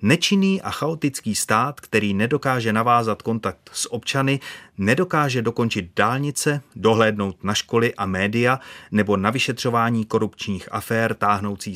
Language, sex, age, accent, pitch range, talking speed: Czech, male, 30-49, native, 100-125 Hz, 120 wpm